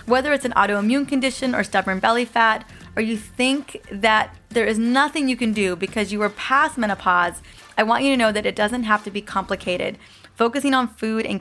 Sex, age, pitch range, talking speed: female, 20-39, 200-235 Hz, 210 wpm